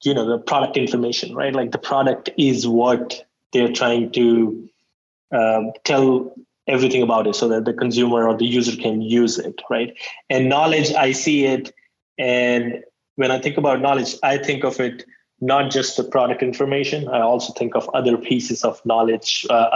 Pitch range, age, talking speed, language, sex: 115-135 Hz, 20-39, 180 wpm, English, male